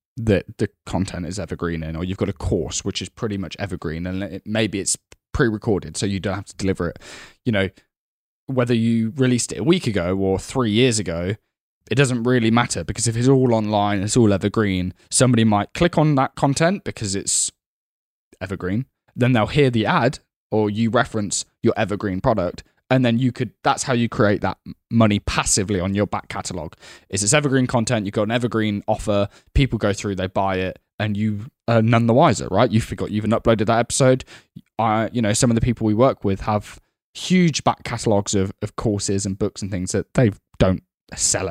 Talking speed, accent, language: 205 wpm, British, English